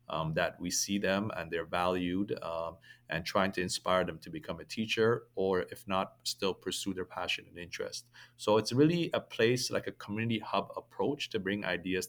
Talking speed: 200 wpm